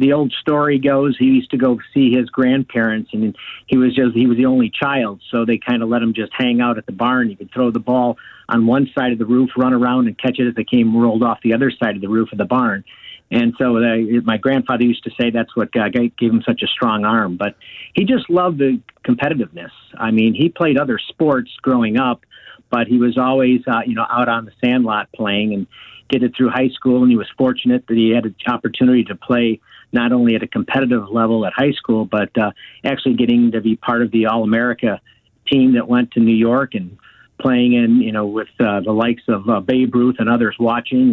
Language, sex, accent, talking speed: English, male, American, 235 wpm